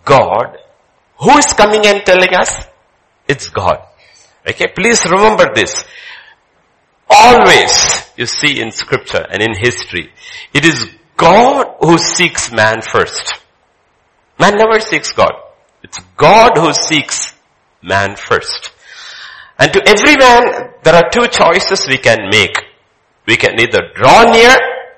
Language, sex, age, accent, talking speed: English, male, 60-79, Indian, 130 wpm